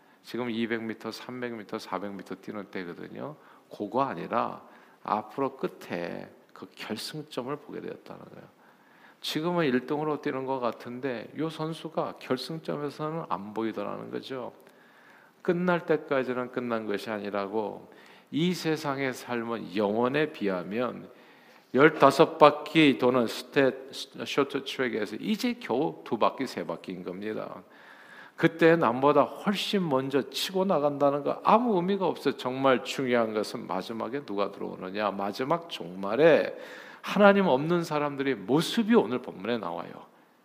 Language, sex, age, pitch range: Korean, male, 50-69, 115-155 Hz